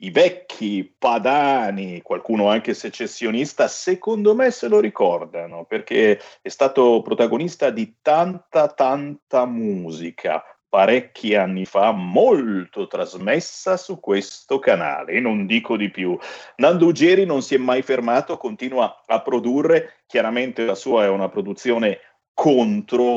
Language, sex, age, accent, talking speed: Italian, male, 40-59, native, 125 wpm